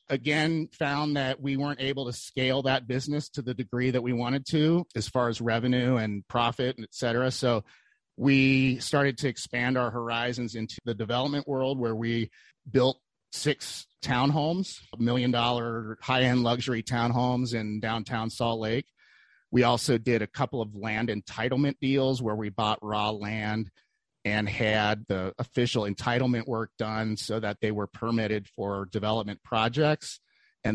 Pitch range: 115-140 Hz